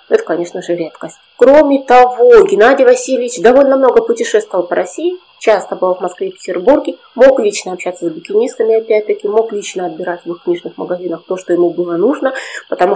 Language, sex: Russian, female